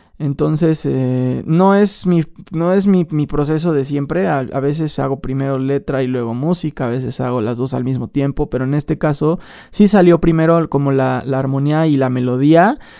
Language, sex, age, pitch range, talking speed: Spanish, male, 20-39, 140-170 Hz, 200 wpm